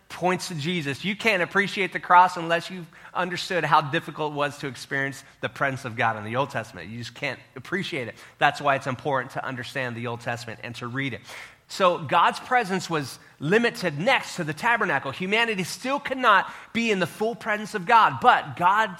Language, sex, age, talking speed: English, male, 30-49, 220 wpm